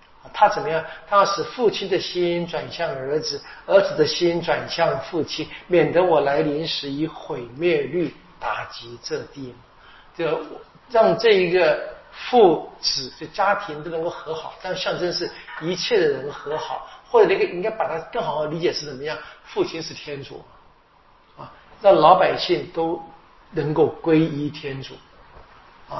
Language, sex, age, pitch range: Chinese, male, 50-69, 150-185 Hz